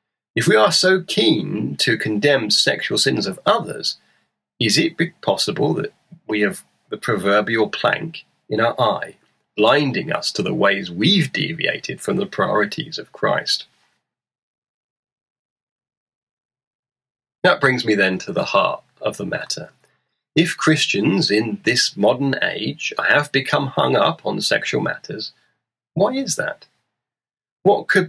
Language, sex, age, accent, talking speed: English, male, 30-49, British, 135 wpm